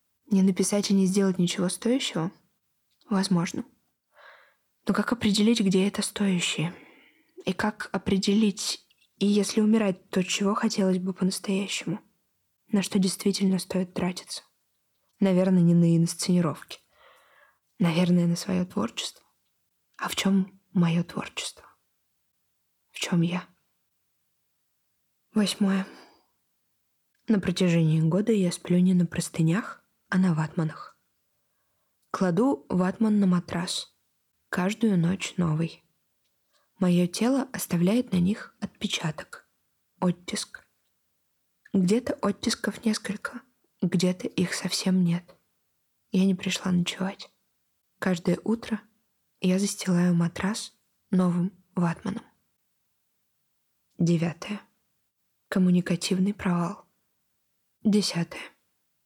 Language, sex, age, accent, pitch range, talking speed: Russian, female, 20-39, native, 180-205 Hz, 95 wpm